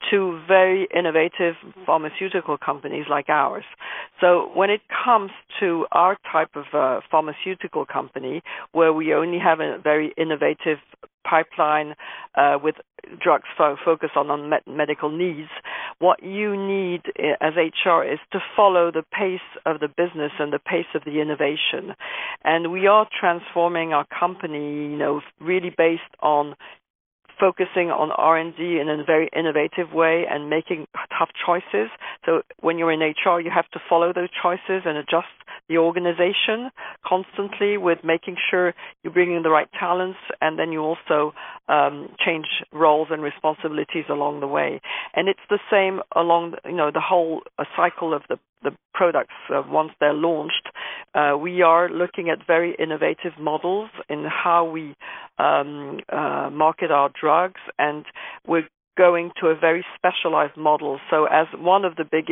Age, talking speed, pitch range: 50-69, 155 wpm, 155-180 Hz